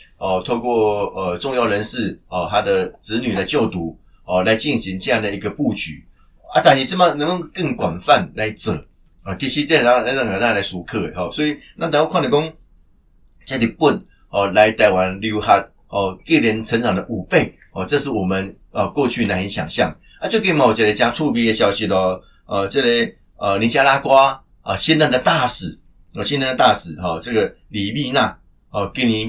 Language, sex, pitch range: Chinese, male, 100-135 Hz